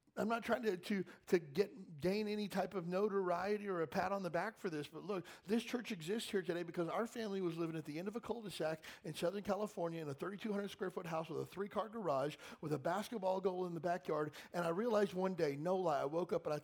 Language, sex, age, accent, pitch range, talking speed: English, male, 50-69, American, 145-205 Hz, 245 wpm